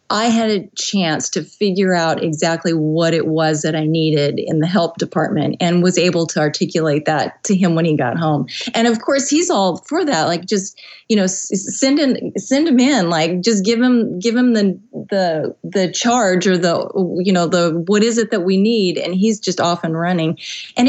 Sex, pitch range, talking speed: female, 170-215 Hz, 215 wpm